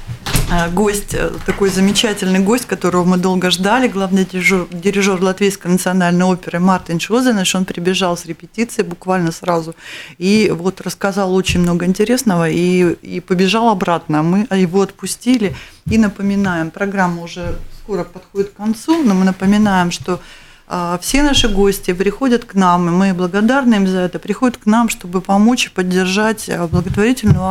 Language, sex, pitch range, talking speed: Russian, female, 175-200 Hz, 145 wpm